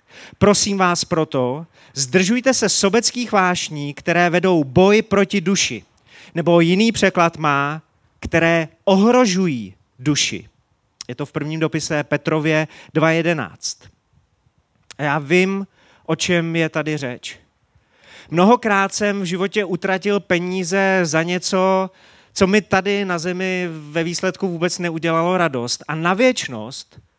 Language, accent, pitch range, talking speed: Czech, native, 150-190 Hz, 120 wpm